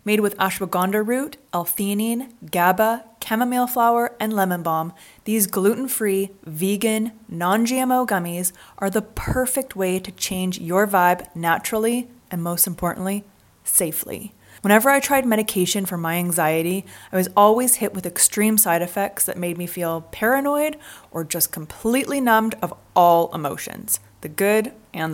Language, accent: English, American